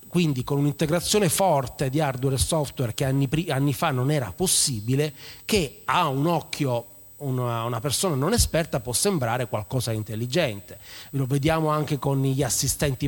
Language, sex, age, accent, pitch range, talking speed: Italian, male, 30-49, native, 125-155 Hz, 160 wpm